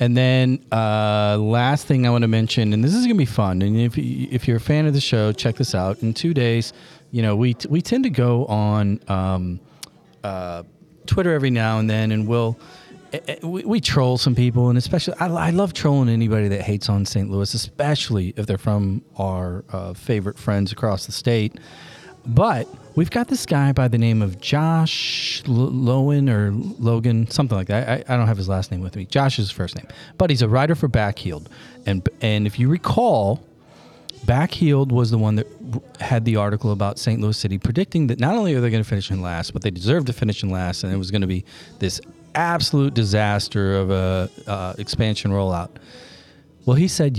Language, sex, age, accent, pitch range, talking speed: English, male, 40-59, American, 100-135 Hz, 215 wpm